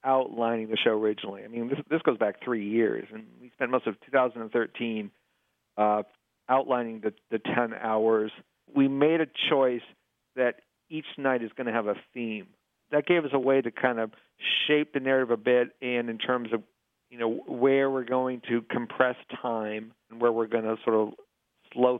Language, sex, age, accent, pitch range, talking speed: English, male, 50-69, American, 115-130 Hz, 190 wpm